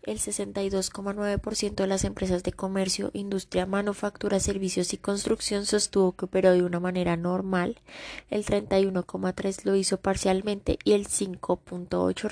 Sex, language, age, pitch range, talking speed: female, Spanish, 20-39, 175-205 Hz, 130 wpm